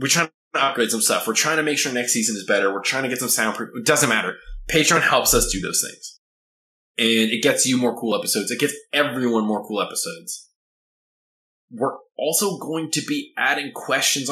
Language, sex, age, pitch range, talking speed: English, male, 20-39, 105-155 Hz, 210 wpm